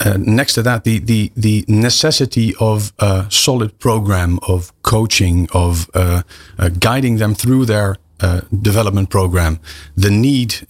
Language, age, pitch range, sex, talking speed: English, 40-59, 95-115 Hz, male, 145 wpm